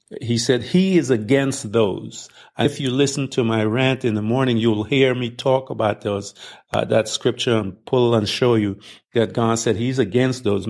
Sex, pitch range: male, 110-130 Hz